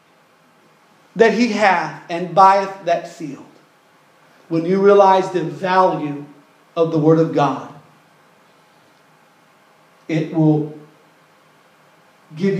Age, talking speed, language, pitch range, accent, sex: 40-59, 95 wpm, English, 155-195 Hz, American, male